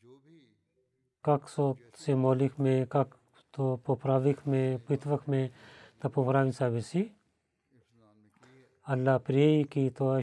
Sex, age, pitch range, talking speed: male, 40-59, 125-150 Hz, 75 wpm